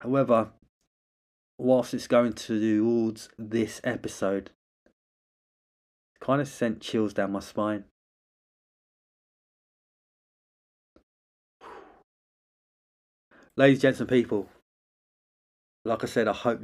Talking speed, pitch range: 90 wpm, 100-125 Hz